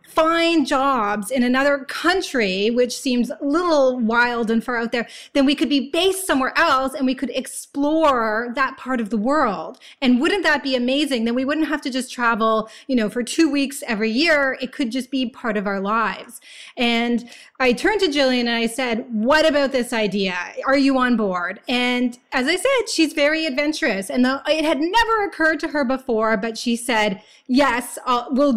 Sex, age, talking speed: female, 30-49, 195 wpm